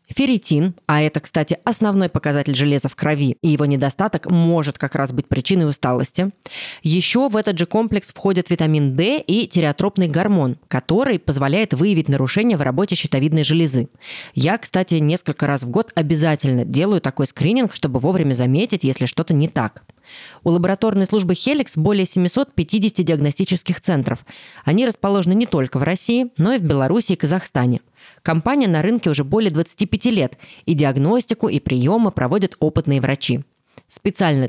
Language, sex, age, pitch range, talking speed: Russian, female, 20-39, 140-190 Hz, 155 wpm